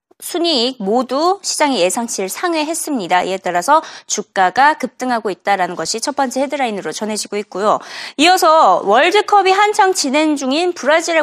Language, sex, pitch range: Korean, female, 225-330 Hz